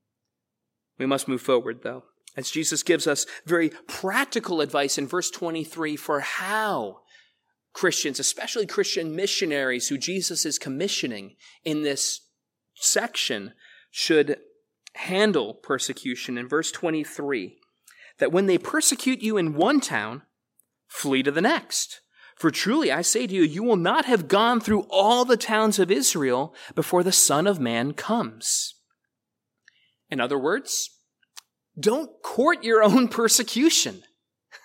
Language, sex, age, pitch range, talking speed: English, male, 30-49, 155-225 Hz, 135 wpm